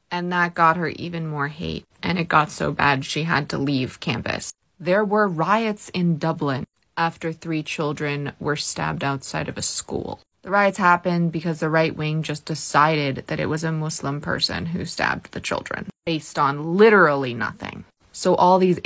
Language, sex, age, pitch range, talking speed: English, female, 20-39, 150-175 Hz, 180 wpm